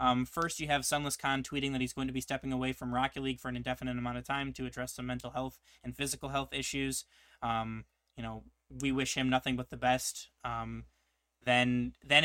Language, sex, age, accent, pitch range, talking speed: English, male, 20-39, American, 125-135 Hz, 220 wpm